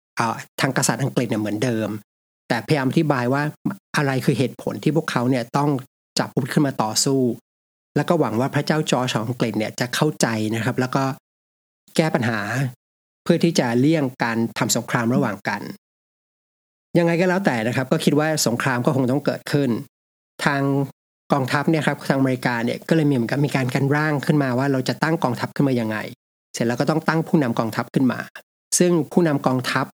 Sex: male